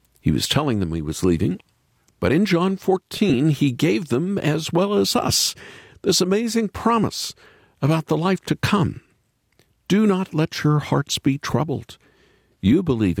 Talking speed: 160 wpm